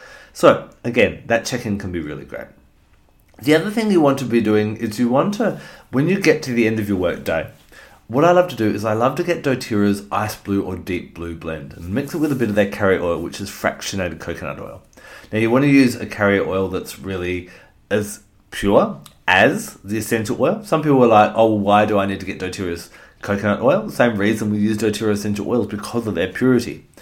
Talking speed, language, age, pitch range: 230 wpm, English, 30-49, 100-120 Hz